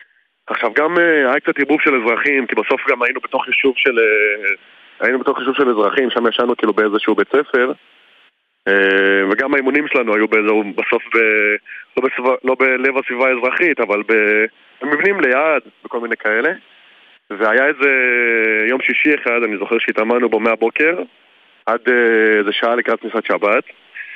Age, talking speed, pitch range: 20-39, 170 wpm, 105-130 Hz